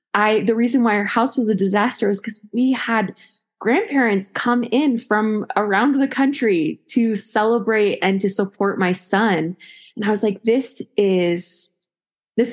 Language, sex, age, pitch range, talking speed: English, female, 20-39, 180-215 Hz, 165 wpm